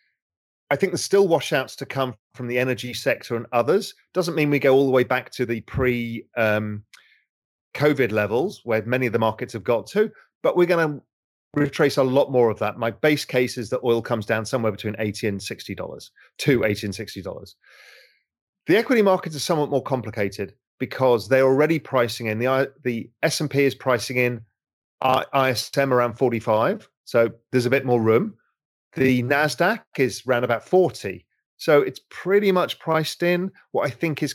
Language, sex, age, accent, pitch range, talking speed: English, male, 30-49, British, 120-145 Hz, 180 wpm